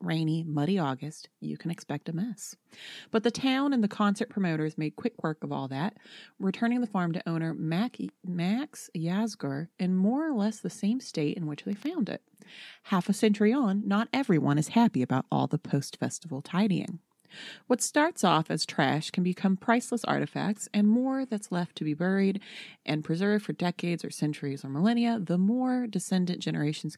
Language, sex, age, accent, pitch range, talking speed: English, female, 30-49, American, 165-225 Hz, 180 wpm